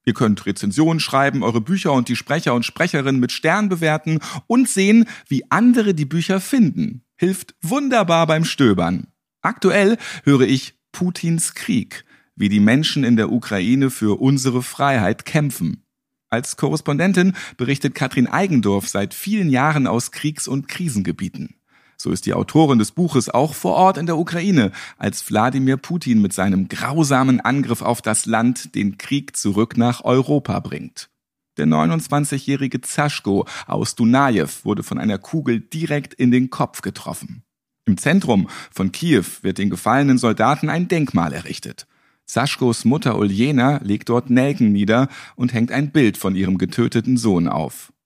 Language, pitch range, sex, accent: German, 115-160 Hz, male, German